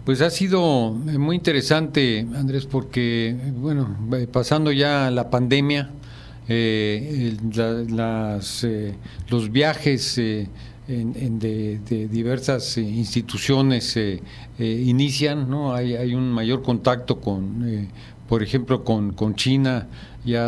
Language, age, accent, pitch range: Spanish, 50-69, Mexican, 115-130 Hz